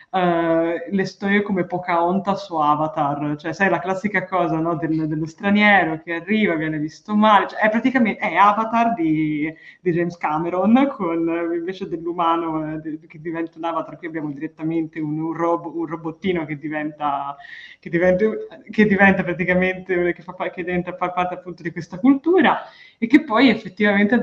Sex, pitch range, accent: female, 180-250 Hz, native